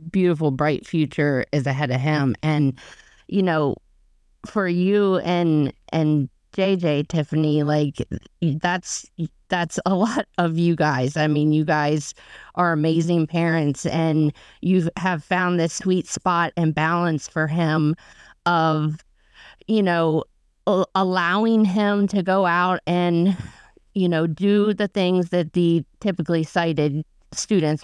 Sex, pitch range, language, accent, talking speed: female, 150-180 Hz, English, American, 130 wpm